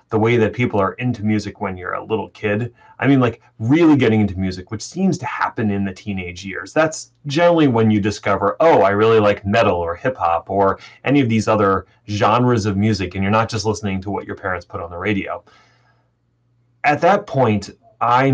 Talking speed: 210 wpm